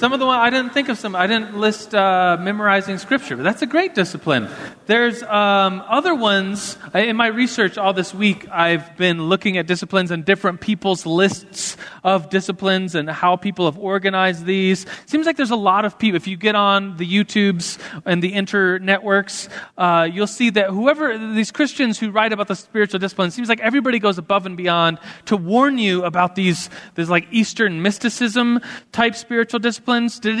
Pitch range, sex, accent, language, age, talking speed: 180-220 Hz, male, American, English, 30-49, 195 wpm